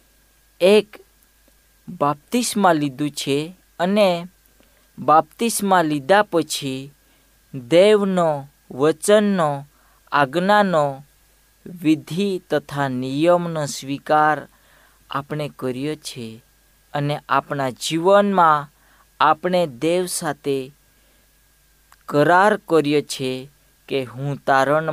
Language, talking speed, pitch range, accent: Hindi, 60 wpm, 135-165 Hz, native